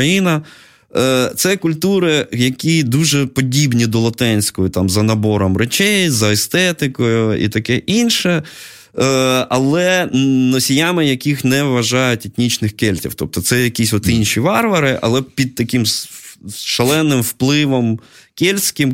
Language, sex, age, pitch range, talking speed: Ukrainian, male, 20-39, 110-145 Hz, 110 wpm